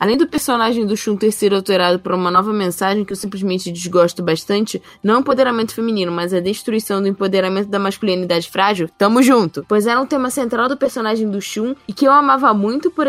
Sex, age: female, 10-29